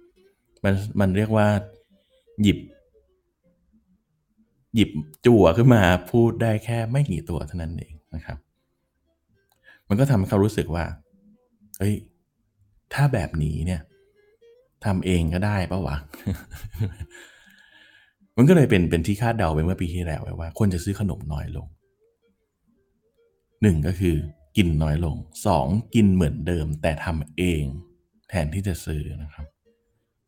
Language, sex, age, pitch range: Thai, male, 20-39, 80-115 Hz